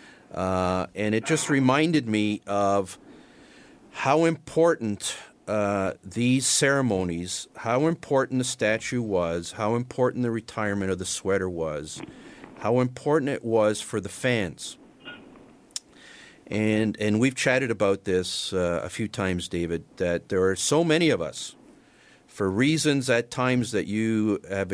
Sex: male